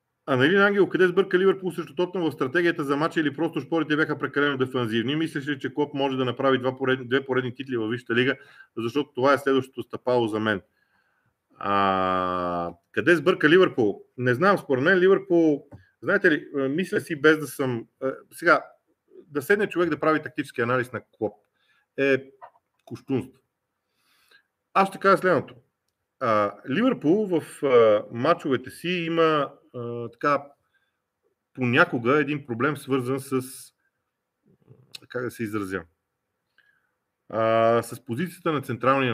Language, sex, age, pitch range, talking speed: Bulgarian, male, 40-59, 125-170 Hz, 145 wpm